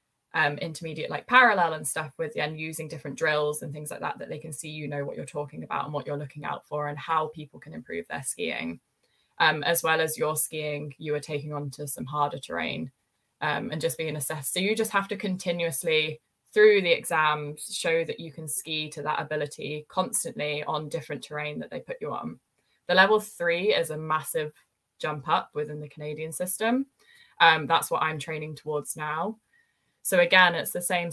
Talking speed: 205 wpm